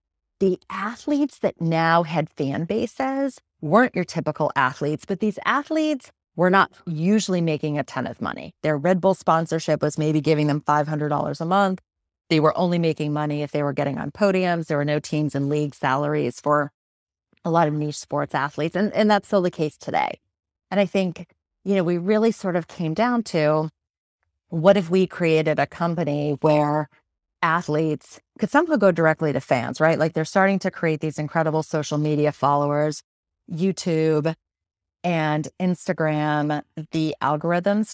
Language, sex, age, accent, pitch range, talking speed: English, female, 30-49, American, 150-185 Hz, 170 wpm